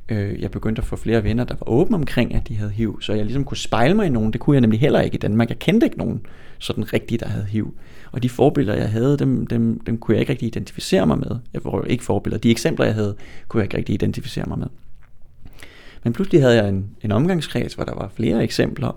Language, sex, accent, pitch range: Danish, male, native, 110-125 Hz